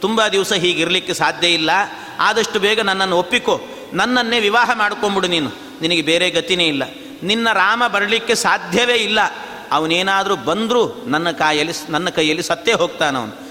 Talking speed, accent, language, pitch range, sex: 135 wpm, native, Kannada, 165-220 Hz, male